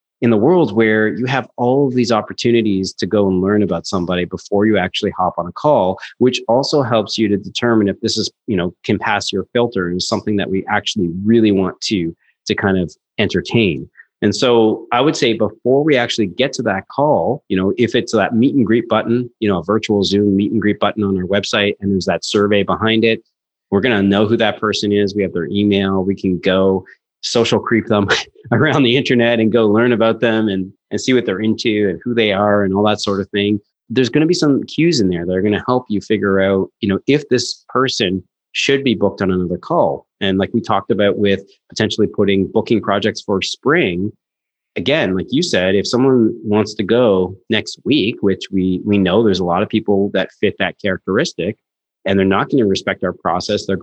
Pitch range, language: 95-115 Hz, English